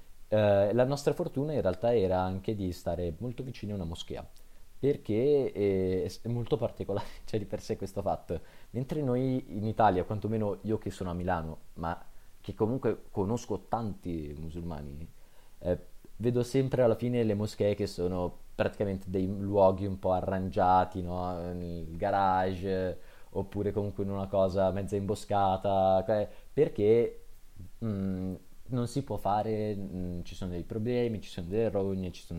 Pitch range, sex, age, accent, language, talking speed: 90-110 Hz, male, 20-39, native, Italian, 155 wpm